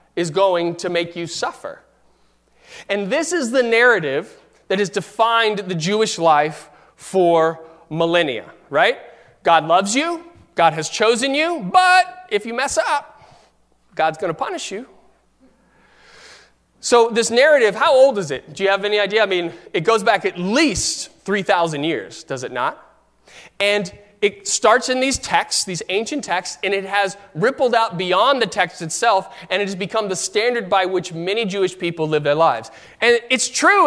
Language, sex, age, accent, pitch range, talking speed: English, male, 30-49, American, 175-240 Hz, 170 wpm